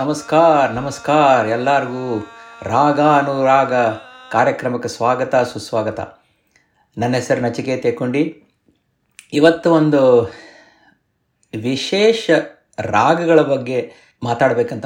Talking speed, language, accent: 70 wpm, Kannada, native